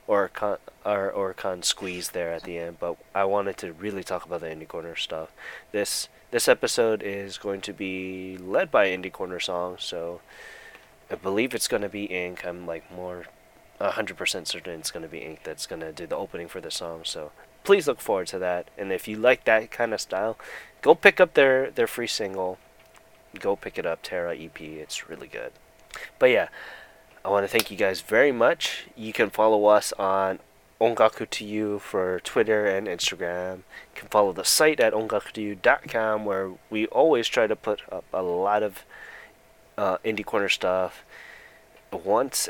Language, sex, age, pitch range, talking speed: English, male, 20-39, 90-110 Hz, 190 wpm